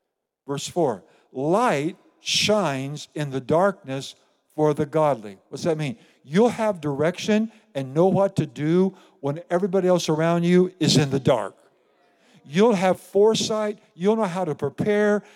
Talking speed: 150 wpm